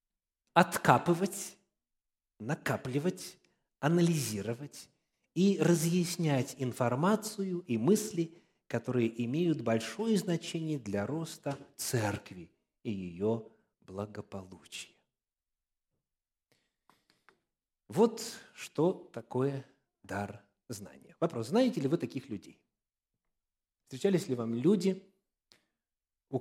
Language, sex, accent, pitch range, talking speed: Russian, male, native, 115-175 Hz, 75 wpm